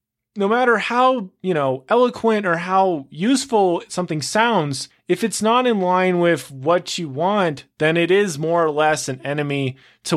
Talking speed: 170 wpm